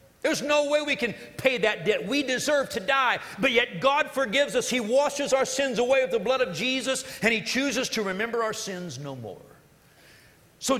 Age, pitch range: 50-69, 180-265 Hz